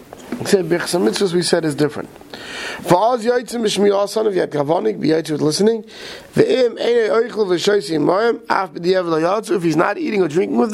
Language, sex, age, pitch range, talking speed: English, male, 30-49, 165-210 Hz, 115 wpm